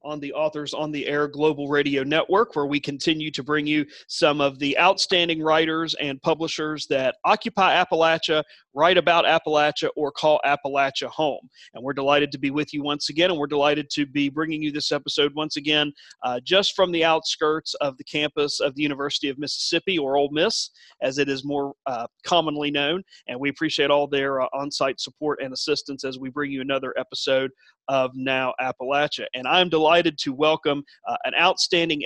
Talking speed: 195 wpm